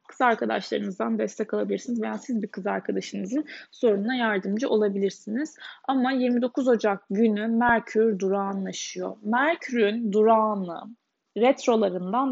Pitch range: 210-255 Hz